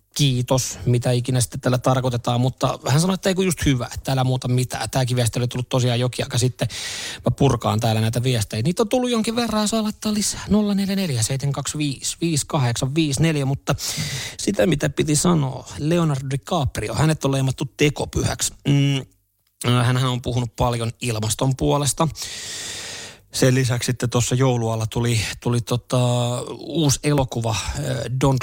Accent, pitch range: native, 115-135 Hz